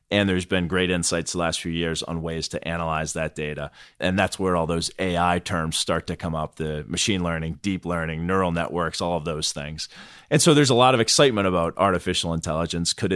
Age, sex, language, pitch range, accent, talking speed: 30-49, male, English, 80-100 Hz, American, 220 wpm